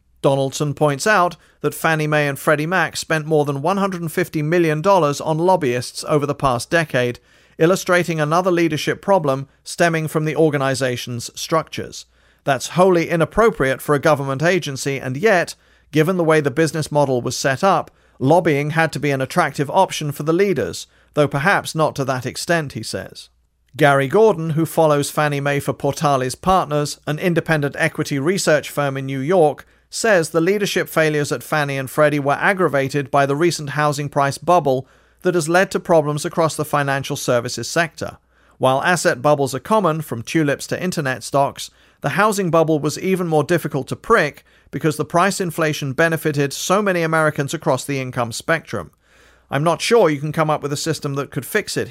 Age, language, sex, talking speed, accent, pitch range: 40-59, English, male, 175 wpm, British, 140-170 Hz